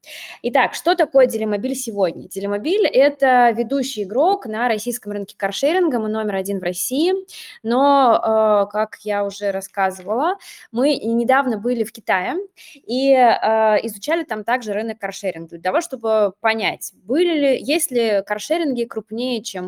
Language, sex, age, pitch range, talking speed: Russian, female, 20-39, 205-275 Hz, 135 wpm